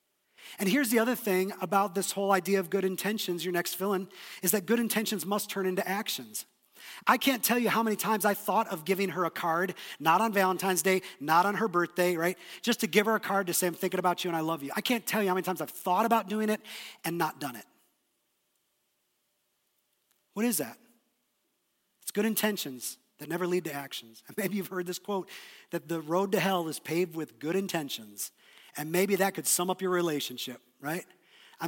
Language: English